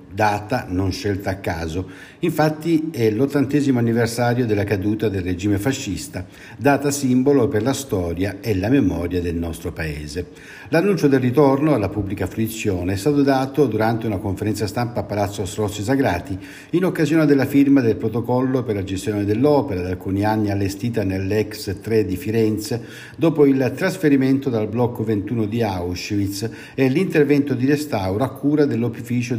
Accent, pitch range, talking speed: native, 100-140 Hz, 155 wpm